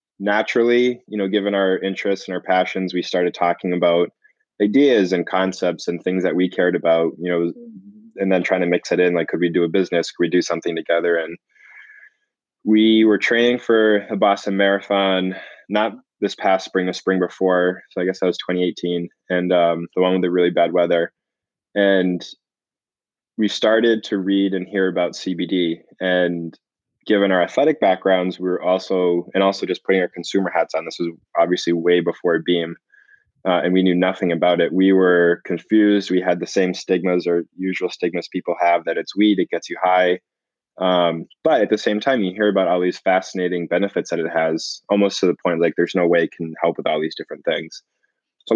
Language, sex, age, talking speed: English, male, 20-39, 200 wpm